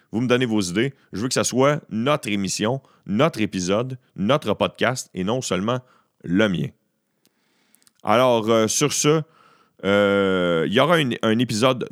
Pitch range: 95-125 Hz